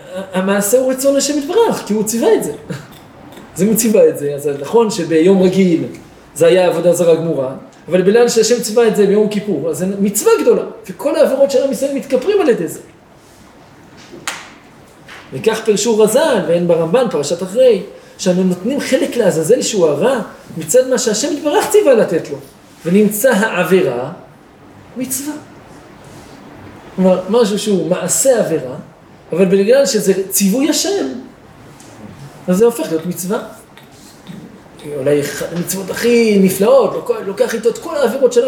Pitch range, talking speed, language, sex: 180-255 Hz, 140 wpm, Hebrew, male